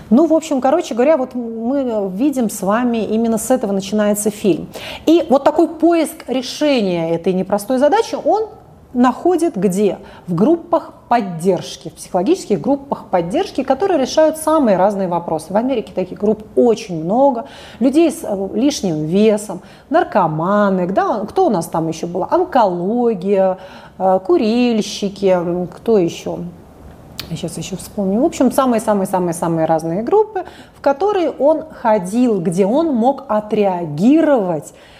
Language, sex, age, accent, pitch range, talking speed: Russian, female, 30-49, native, 190-280 Hz, 130 wpm